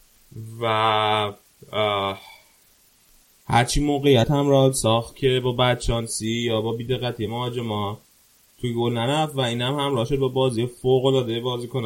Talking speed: 130 wpm